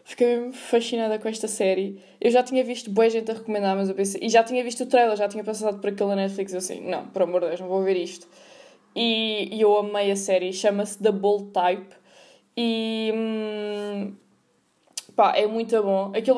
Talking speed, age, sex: 205 wpm, 20-39, female